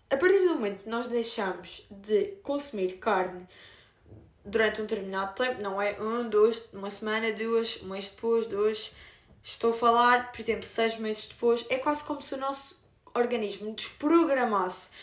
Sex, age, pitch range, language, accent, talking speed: female, 20-39, 195-260 Hz, Portuguese, Brazilian, 165 wpm